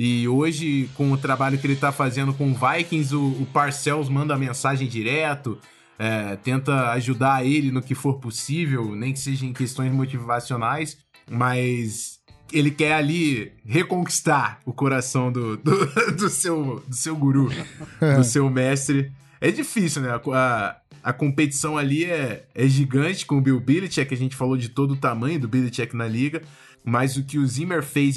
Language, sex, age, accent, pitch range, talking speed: Portuguese, male, 20-39, Brazilian, 130-150 Hz, 175 wpm